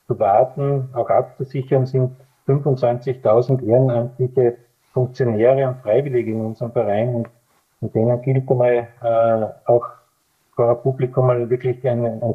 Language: German